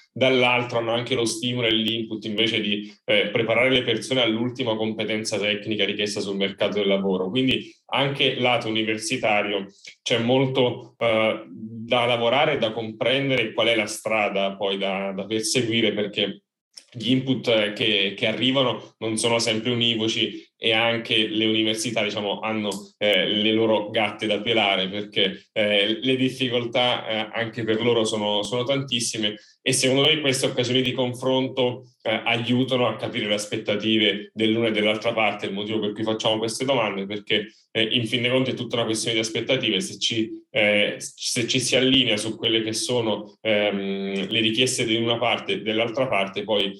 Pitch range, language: 105-120 Hz, Italian